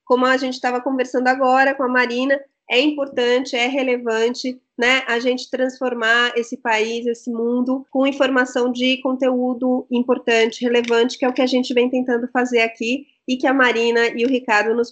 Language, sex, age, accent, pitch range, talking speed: Portuguese, female, 30-49, Brazilian, 230-275 Hz, 180 wpm